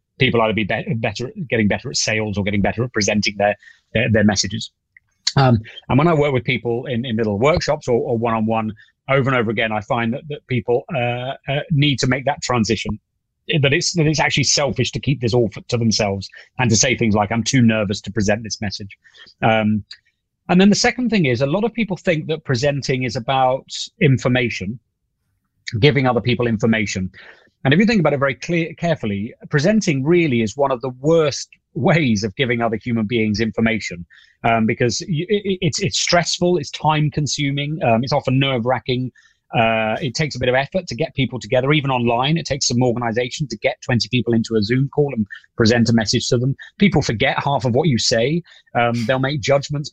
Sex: male